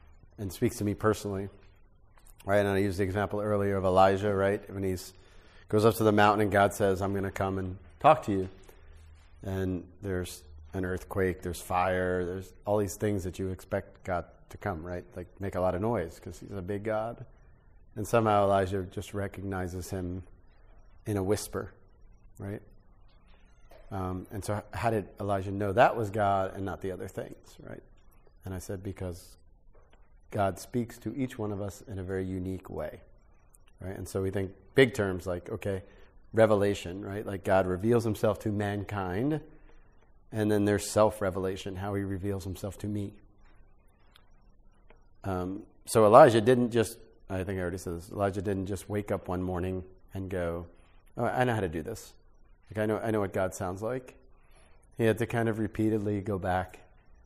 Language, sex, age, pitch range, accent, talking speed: English, male, 30-49, 95-105 Hz, American, 180 wpm